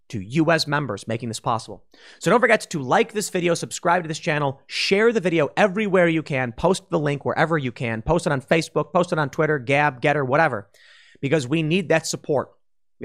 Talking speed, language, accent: 210 wpm, English, American